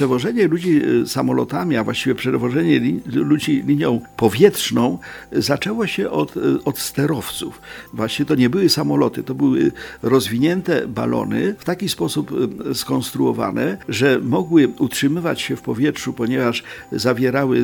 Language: Polish